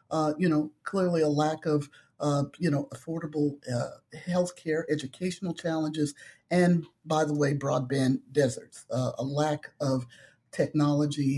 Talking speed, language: 135 wpm, English